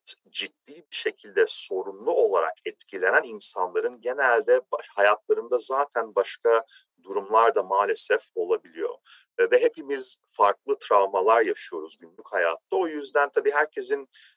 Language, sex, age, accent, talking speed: Turkish, male, 40-59, native, 110 wpm